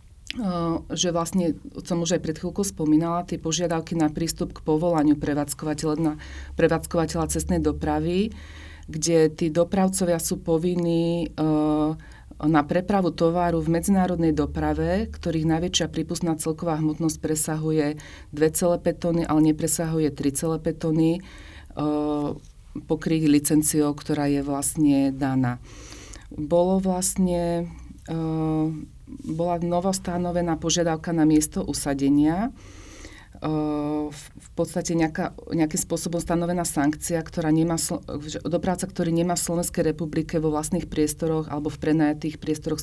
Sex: female